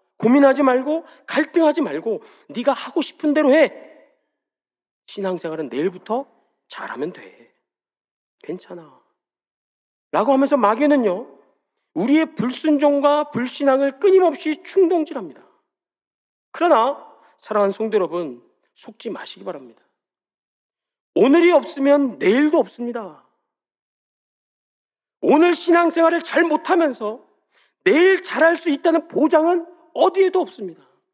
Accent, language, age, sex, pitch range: native, Korean, 40-59, male, 230-330 Hz